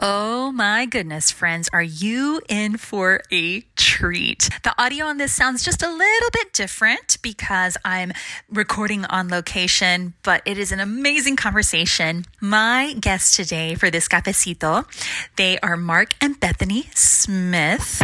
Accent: American